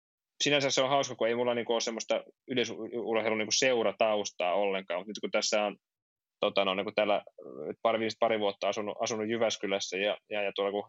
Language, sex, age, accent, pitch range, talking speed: Finnish, male, 20-39, native, 95-110 Hz, 185 wpm